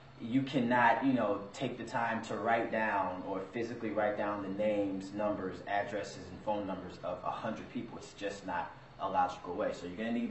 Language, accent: English, American